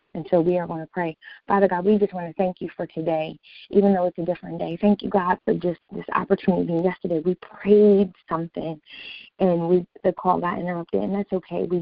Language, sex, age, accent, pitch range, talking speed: English, female, 20-39, American, 175-205 Hz, 225 wpm